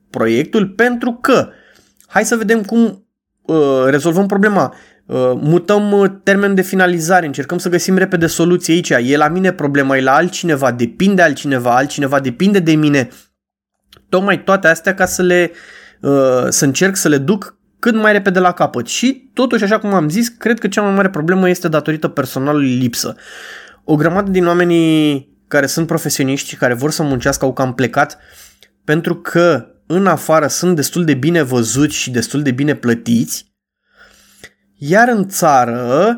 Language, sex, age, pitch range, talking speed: Romanian, male, 20-39, 140-200 Hz, 165 wpm